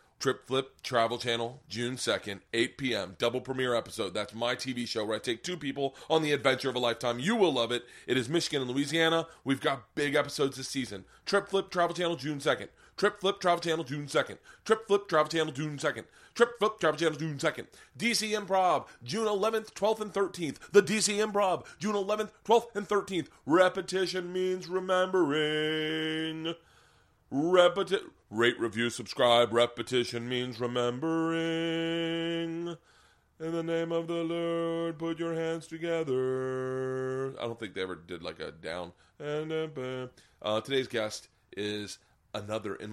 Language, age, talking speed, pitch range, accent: English, 30-49, 160 wpm, 110-165 Hz, American